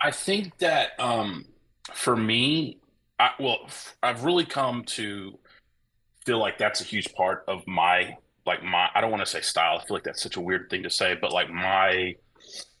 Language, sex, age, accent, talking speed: English, male, 30-49, American, 190 wpm